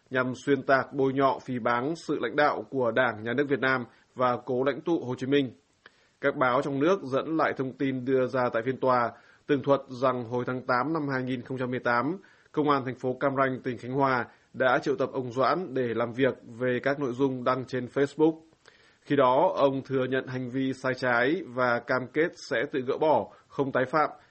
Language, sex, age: Vietnamese, male, 20-39